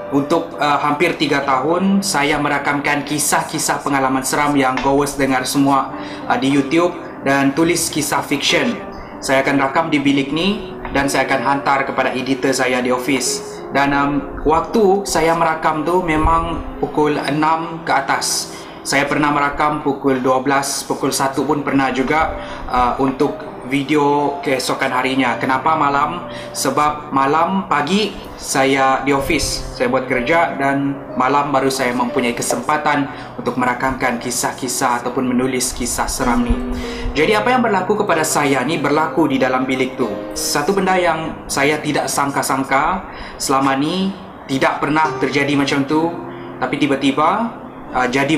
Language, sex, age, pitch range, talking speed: Malay, male, 20-39, 130-155 Hz, 145 wpm